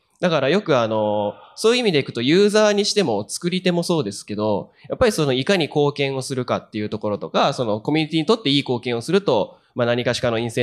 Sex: male